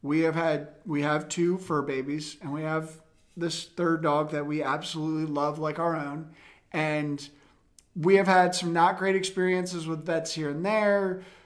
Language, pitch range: English, 170-210 Hz